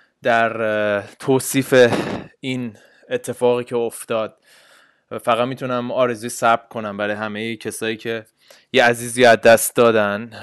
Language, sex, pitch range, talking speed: Persian, male, 110-130 Hz, 120 wpm